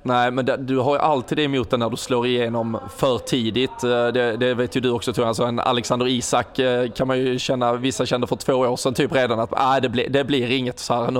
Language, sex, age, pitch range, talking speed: Swedish, male, 20-39, 120-135 Hz, 265 wpm